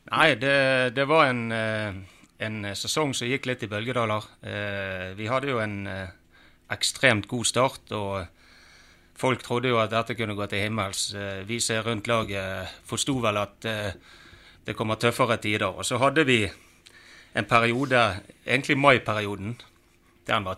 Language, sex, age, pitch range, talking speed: English, male, 30-49, 95-115 Hz, 150 wpm